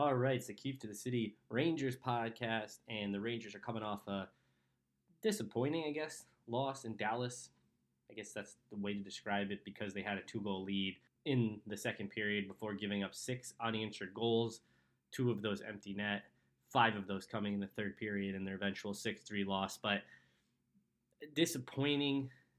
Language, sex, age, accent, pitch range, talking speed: English, male, 20-39, American, 100-120 Hz, 185 wpm